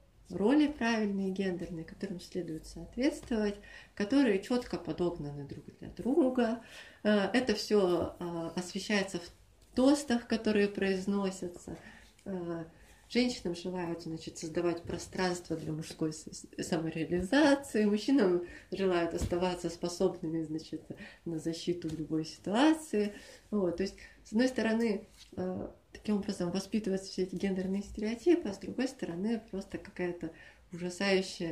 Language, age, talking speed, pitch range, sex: Russian, 30-49, 100 wpm, 175-215 Hz, female